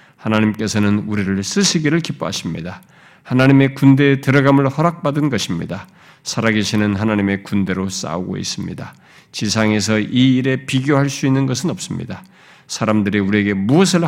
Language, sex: Korean, male